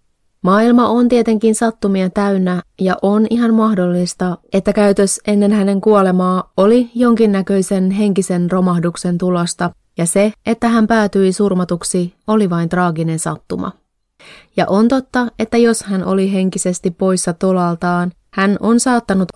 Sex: female